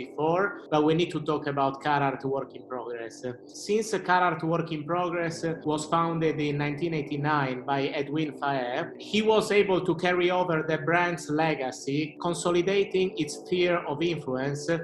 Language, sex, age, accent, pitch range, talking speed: English, male, 30-49, Italian, 145-175 Hz, 150 wpm